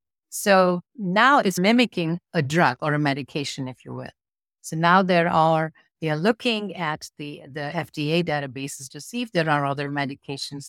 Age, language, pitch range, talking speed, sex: 50-69, English, 140-175 Hz, 175 wpm, female